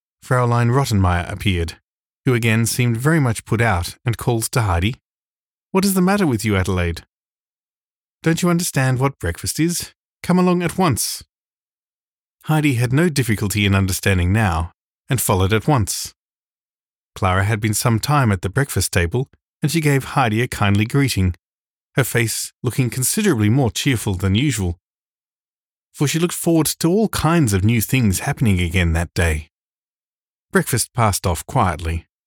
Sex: male